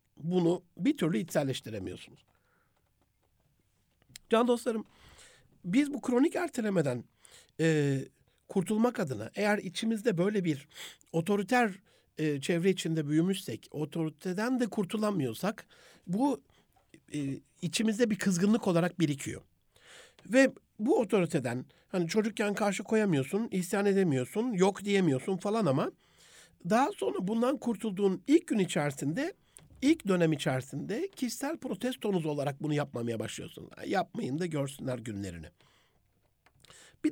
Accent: native